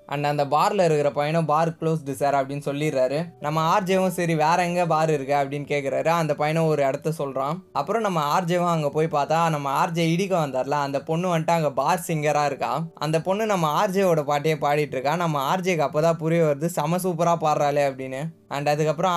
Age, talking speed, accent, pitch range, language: 20-39, 185 wpm, native, 145-170 Hz, Tamil